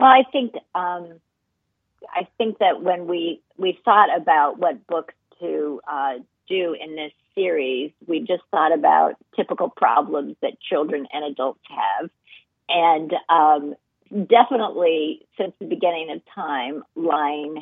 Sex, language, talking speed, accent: female, English, 130 wpm, American